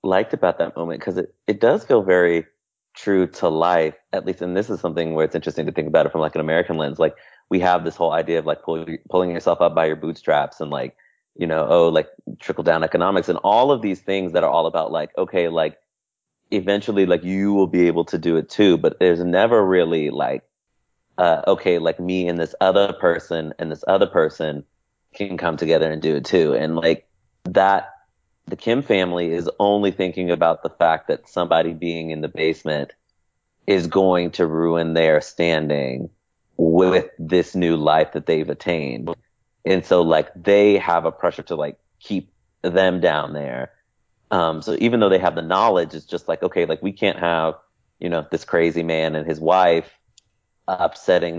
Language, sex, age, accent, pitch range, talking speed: English, male, 30-49, American, 80-95 Hz, 200 wpm